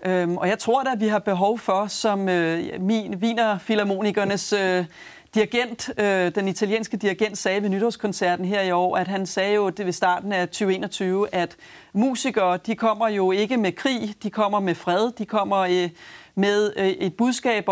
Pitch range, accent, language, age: 190-225 Hz, native, Danish, 30-49